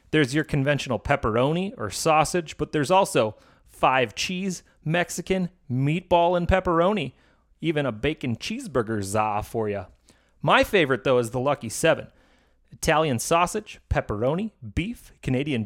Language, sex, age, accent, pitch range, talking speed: English, male, 30-49, American, 125-180 Hz, 130 wpm